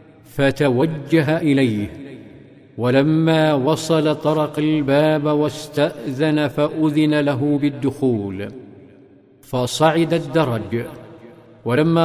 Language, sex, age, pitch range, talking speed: Arabic, male, 50-69, 140-160 Hz, 65 wpm